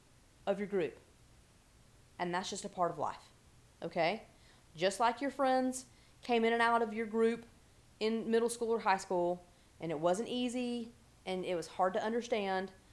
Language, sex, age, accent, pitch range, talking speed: English, female, 30-49, American, 180-240 Hz, 170 wpm